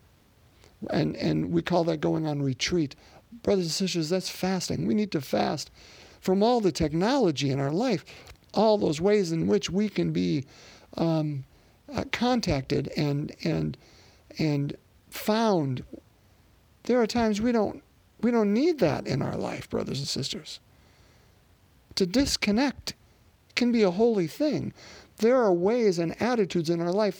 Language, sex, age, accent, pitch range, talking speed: English, male, 50-69, American, 125-205 Hz, 150 wpm